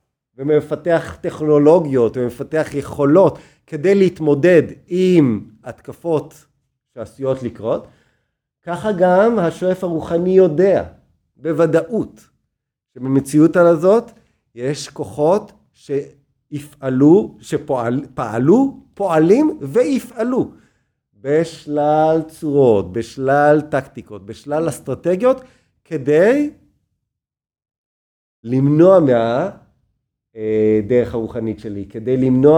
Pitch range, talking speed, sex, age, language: 120-160 Hz, 70 wpm, male, 40-59, Hebrew